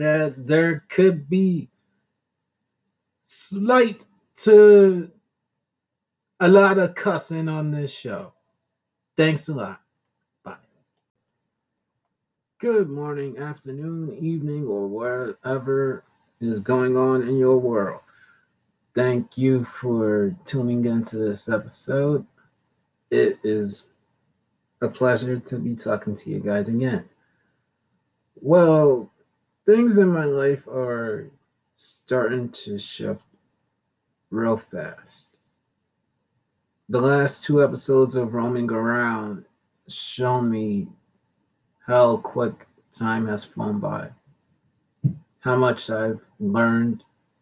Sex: male